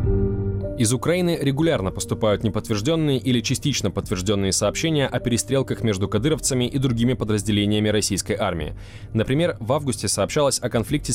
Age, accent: 20-39, native